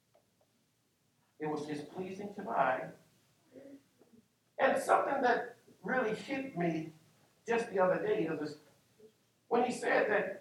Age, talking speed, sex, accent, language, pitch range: 50-69, 120 wpm, male, American, English, 165-250 Hz